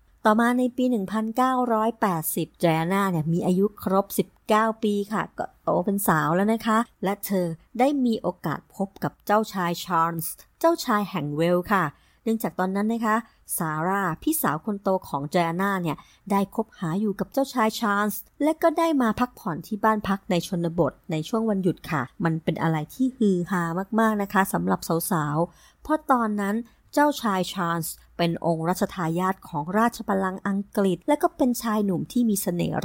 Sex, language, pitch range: male, Thai, 175-230 Hz